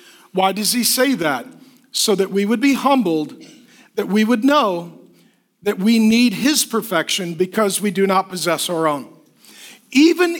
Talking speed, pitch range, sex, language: 160 wpm, 210-270 Hz, male, English